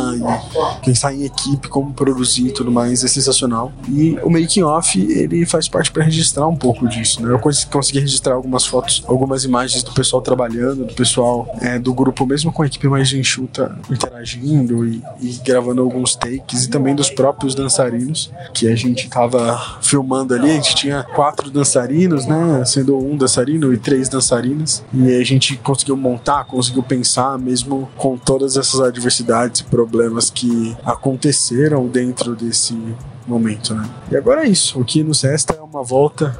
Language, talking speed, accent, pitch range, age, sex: Portuguese, 175 wpm, Brazilian, 120-135 Hz, 20-39, male